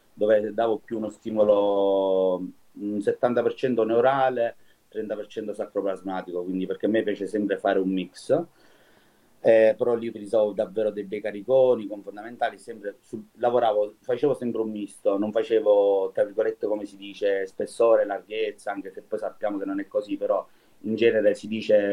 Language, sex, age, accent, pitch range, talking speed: Italian, male, 30-49, native, 100-155 Hz, 155 wpm